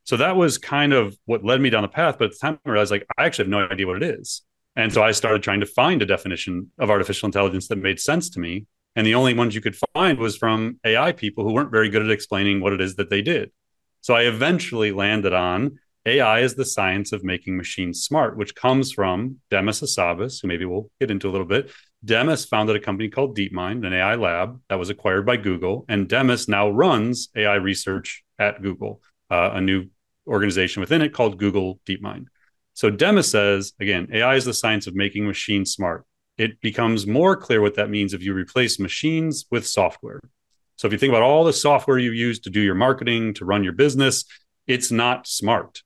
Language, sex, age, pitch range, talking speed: English, male, 30-49, 100-130 Hz, 220 wpm